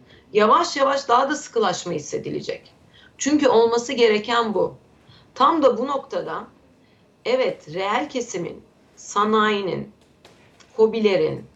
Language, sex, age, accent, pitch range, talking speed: Turkish, female, 40-59, native, 210-275 Hz, 100 wpm